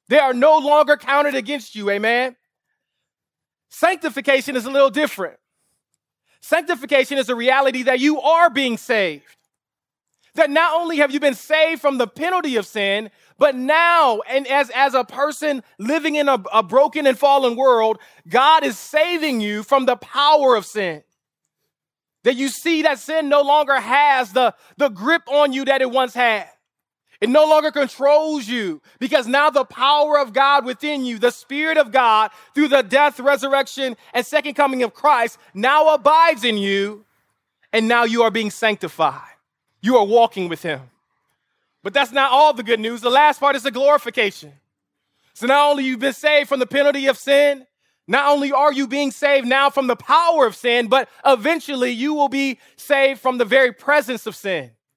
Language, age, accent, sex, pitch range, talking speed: English, 20-39, American, male, 240-290 Hz, 180 wpm